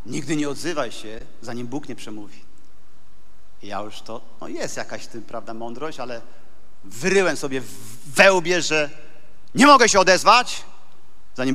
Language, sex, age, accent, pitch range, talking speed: Polish, male, 40-59, native, 155-235 Hz, 155 wpm